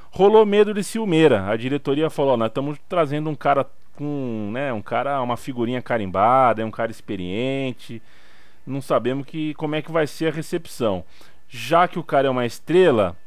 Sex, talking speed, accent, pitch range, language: male, 185 wpm, Brazilian, 110-155 Hz, Portuguese